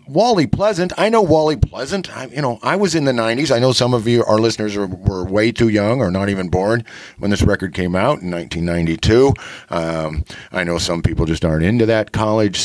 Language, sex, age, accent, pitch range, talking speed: English, male, 50-69, American, 85-110 Hz, 215 wpm